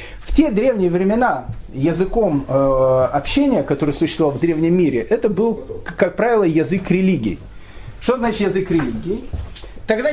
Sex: male